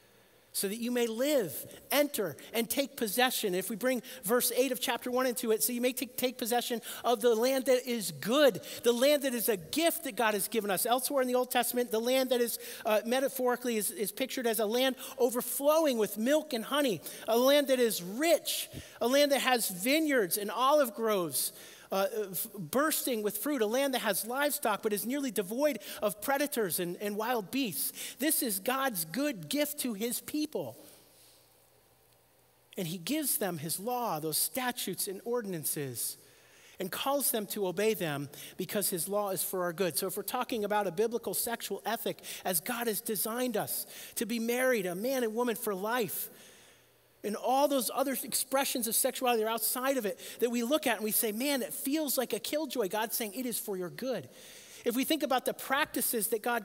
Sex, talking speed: male, 200 wpm